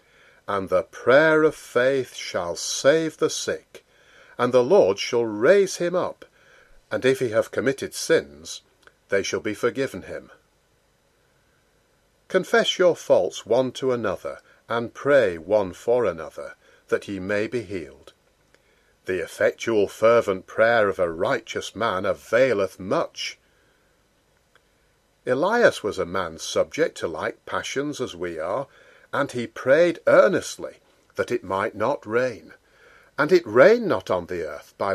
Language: English